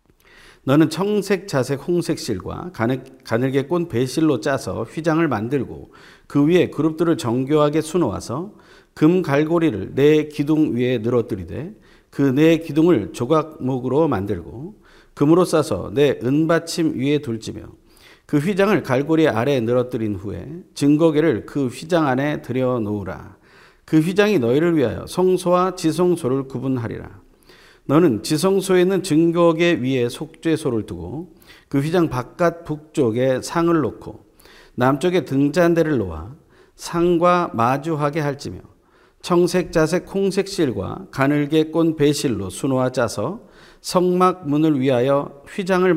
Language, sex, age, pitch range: Korean, male, 40-59, 130-170 Hz